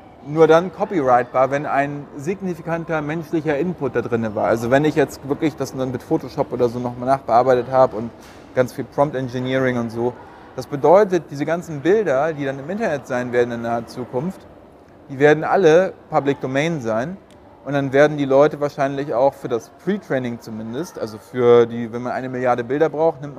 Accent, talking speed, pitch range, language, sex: German, 185 wpm, 125-155 Hz, German, male